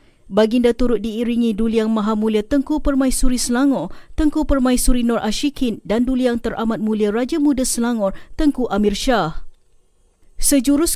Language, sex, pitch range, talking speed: Malay, female, 220-270 Hz, 140 wpm